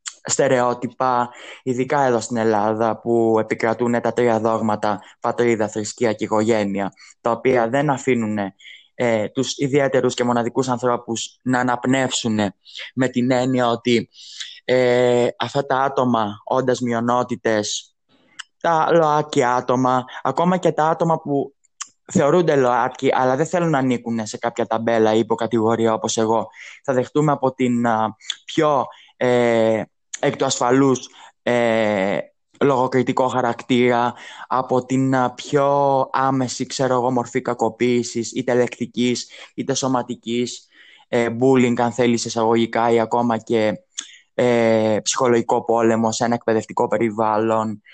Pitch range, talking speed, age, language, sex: 115-130 Hz, 125 wpm, 20-39, Greek, male